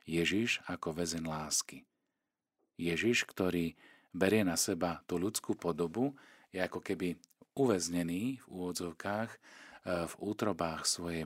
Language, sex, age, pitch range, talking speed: Slovak, male, 40-59, 80-95 Hz, 110 wpm